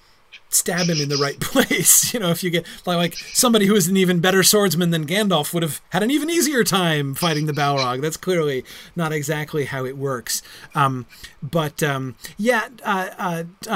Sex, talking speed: male, 190 wpm